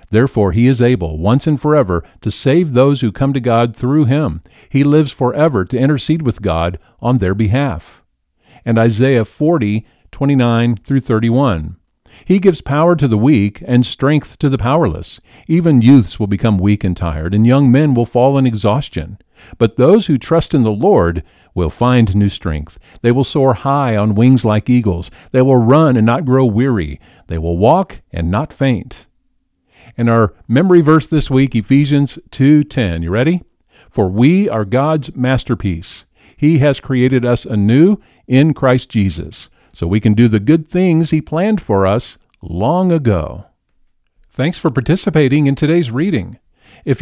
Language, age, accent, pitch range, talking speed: English, 50-69, American, 105-140 Hz, 170 wpm